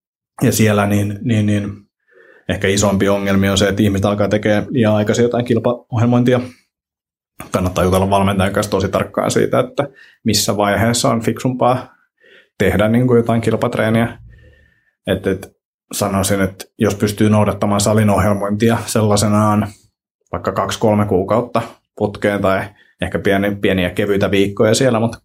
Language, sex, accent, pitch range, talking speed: Finnish, male, native, 95-110 Hz, 130 wpm